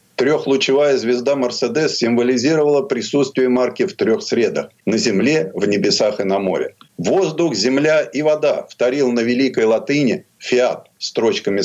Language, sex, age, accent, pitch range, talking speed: Russian, male, 50-69, native, 125-170 Hz, 140 wpm